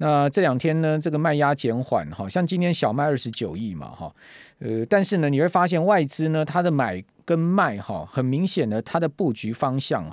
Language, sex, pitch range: Chinese, male, 115-150 Hz